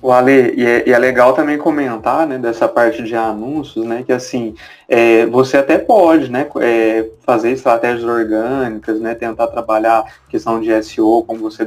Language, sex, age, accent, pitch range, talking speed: Portuguese, male, 20-39, Brazilian, 120-170 Hz, 160 wpm